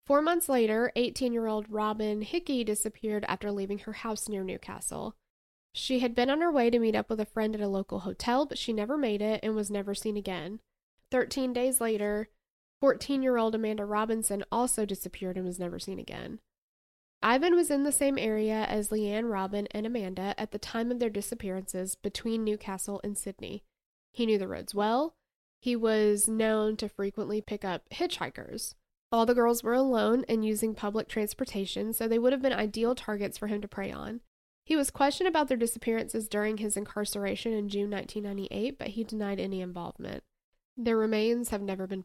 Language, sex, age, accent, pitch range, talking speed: English, female, 10-29, American, 200-240 Hz, 185 wpm